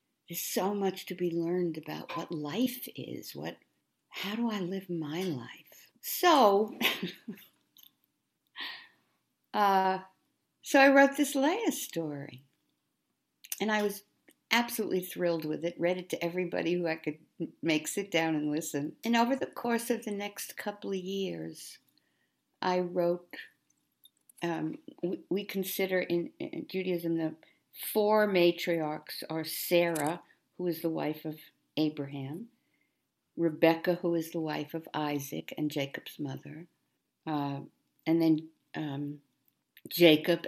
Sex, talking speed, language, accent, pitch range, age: female, 130 wpm, English, American, 150-190 Hz, 60-79